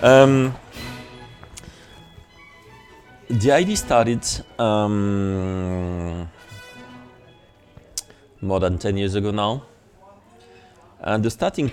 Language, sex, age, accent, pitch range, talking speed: Danish, male, 30-49, French, 95-115 Hz, 70 wpm